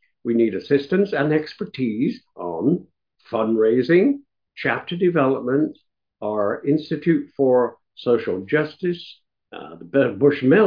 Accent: American